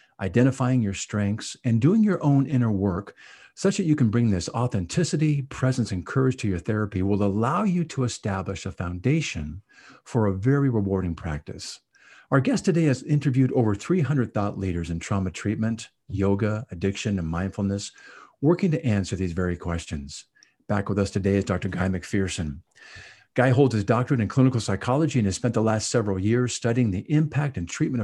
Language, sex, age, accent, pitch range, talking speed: English, male, 50-69, American, 95-130 Hz, 180 wpm